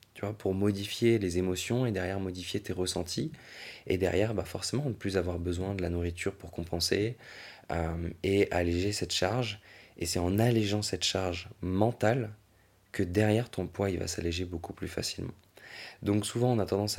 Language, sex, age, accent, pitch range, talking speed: French, male, 20-39, French, 90-105 Hz, 180 wpm